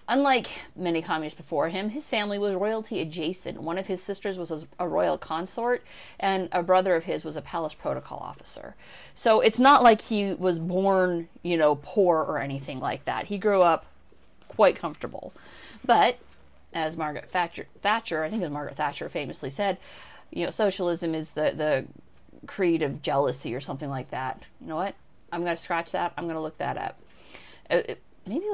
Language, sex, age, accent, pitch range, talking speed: English, female, 30-49, American, 155-200 Hz, 180 wpm